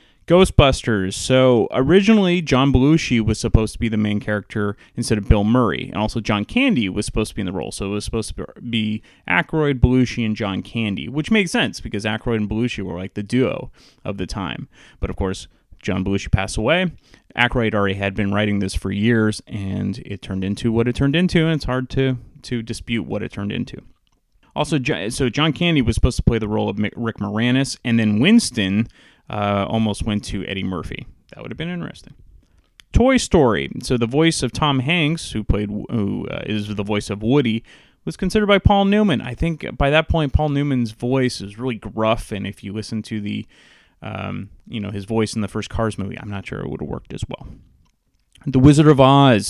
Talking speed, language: 210 wpm, English